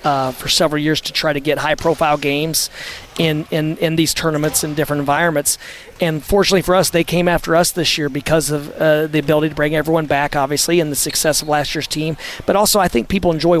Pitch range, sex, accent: 150-175 Hz, male, American